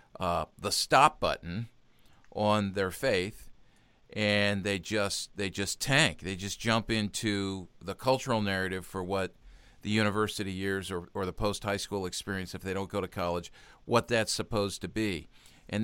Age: 50-69